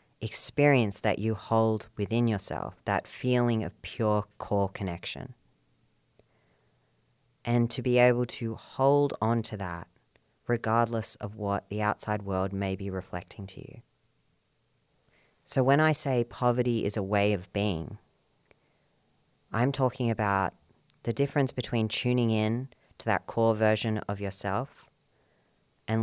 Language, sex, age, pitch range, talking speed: English, female, 30-49, 105-125 Hz, 130 wpm